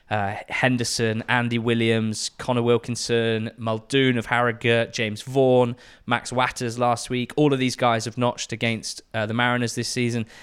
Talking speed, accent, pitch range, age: 155 wpm, British, 110-125 Hz, 20-39